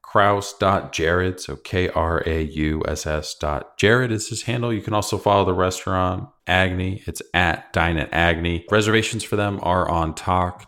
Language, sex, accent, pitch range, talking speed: English, male, American, 75-95 Hz, 170 wpm